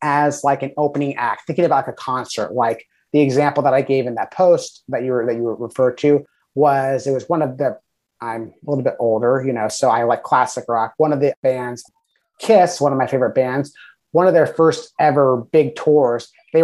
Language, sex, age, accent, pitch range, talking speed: English, male, 30-49, American, 130-165 Hz, 220 wpm